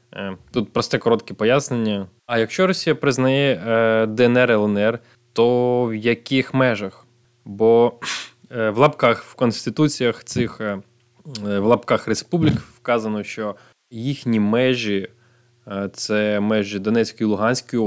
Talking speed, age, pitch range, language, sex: 105 wpm, 20-39, 110-130 Hz, Ukrainian, male